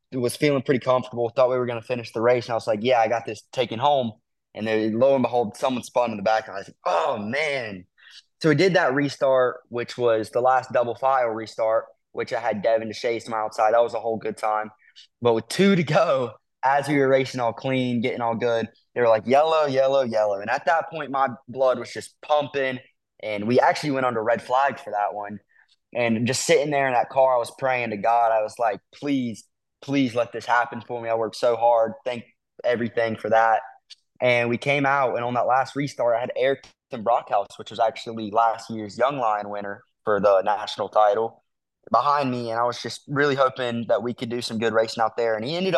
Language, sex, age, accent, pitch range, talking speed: English, male, 20-39, American, 110-130 Hz, 235 wpm